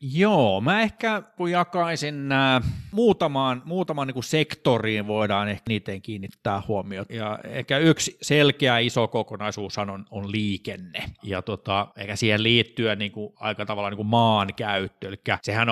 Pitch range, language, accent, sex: 100-120 Hz, Finnish, native, male